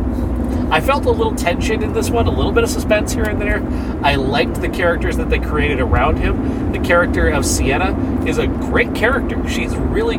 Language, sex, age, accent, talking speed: English, male, 30-49, American, 205 wpm